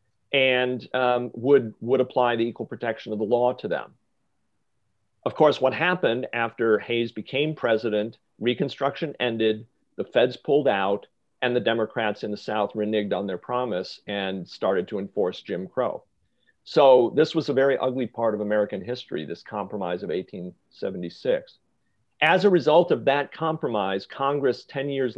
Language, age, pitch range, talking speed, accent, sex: English, 40-59, 110-145 Hz, 155 wpm, American, male